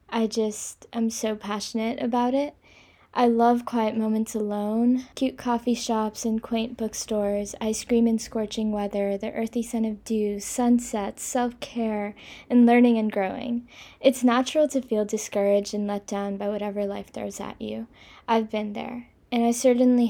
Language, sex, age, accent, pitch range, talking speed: English, female, 10-29, American, 215-250 Hz, 160 wpm